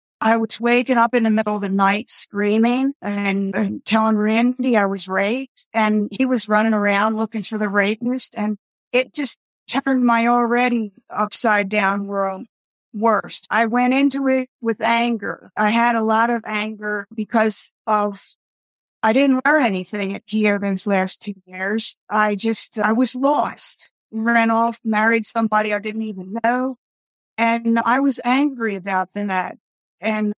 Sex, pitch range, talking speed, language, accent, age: female, 205-240 Hz, 160 wpm, English, American, 50-69